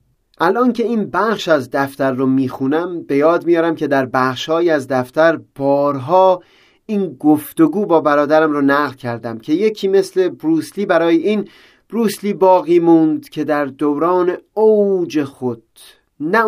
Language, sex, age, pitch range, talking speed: Persian, male, 30-49, 145-205 Hz, 140 wpm